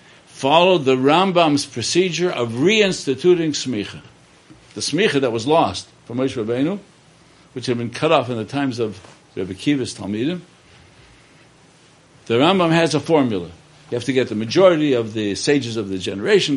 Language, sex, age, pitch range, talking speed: English, male, 60-79, 115-160 Hz, 160 wpm